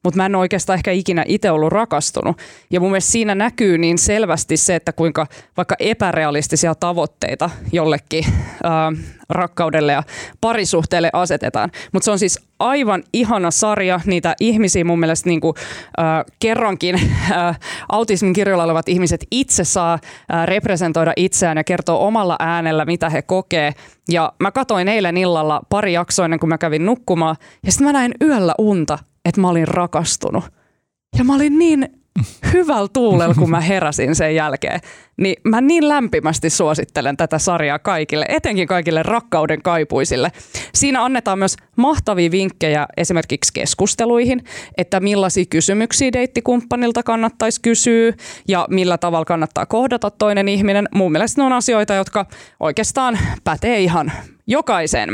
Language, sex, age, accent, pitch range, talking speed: Finnish, female, 20-39, native, 165-215 Hz, 145 wpm